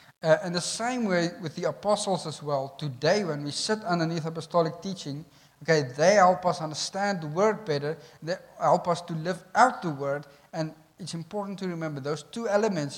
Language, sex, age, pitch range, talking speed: English, male, 50-69, 150-195 Hz, 190 wpm